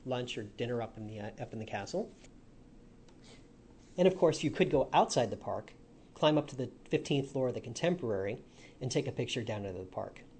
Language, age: English, 40-59